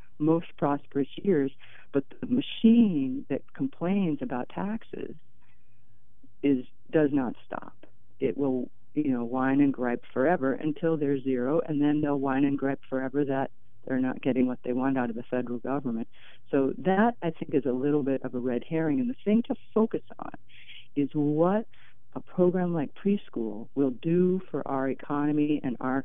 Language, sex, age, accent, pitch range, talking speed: English, female, 50-69, American, 125-165 Hz, 175 wpm